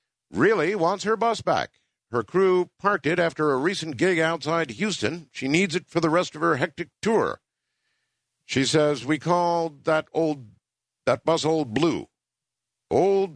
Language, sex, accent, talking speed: English, male, American, 160 wpm